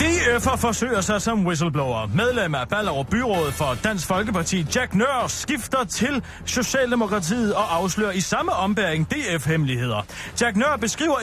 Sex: male